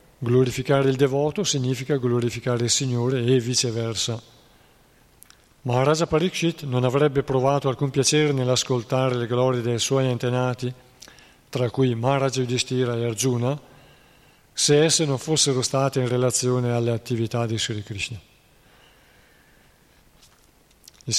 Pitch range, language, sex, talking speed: 120-140 Hz, Italian, male, 115 wpm